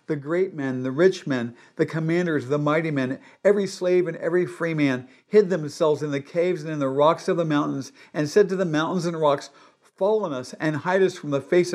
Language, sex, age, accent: English, male, 50-69, American